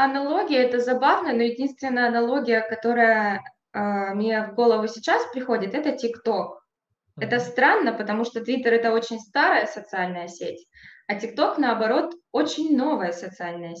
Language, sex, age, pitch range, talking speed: Russian, female, 20-39, 210-260 Hz, 135 wpm